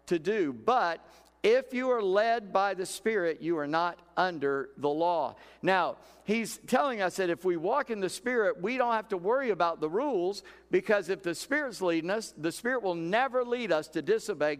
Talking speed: 200 wpm